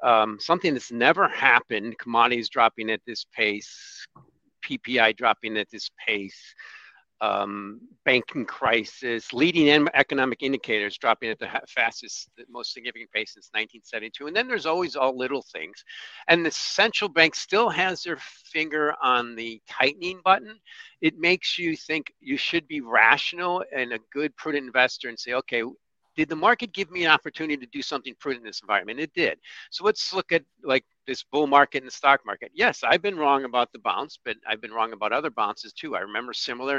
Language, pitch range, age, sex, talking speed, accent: English, 115-175 Hz, 50-69, male, 180 wpm, American